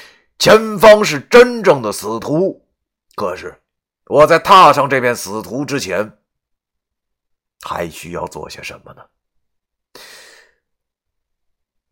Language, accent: Chinese, native